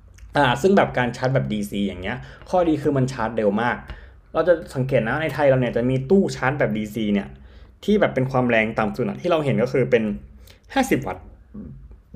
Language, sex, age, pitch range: Thai, male, 20-39, 110-145 Hz